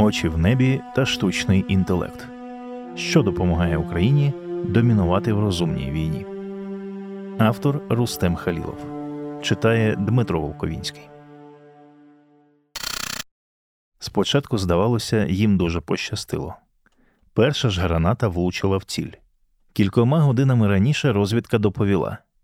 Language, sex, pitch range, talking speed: English, male, 90-135 Hz, 95 wpm